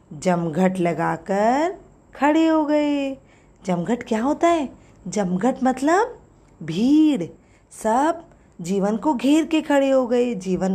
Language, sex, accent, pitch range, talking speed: Hindi, female, native, 195-305 Hz, 115 wpm